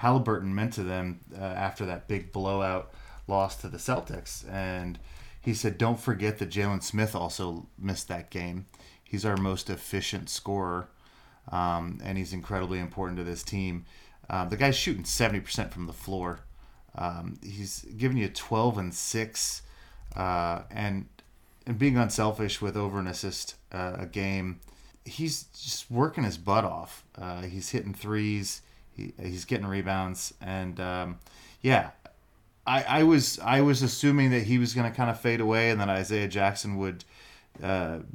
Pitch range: 90-110 Hz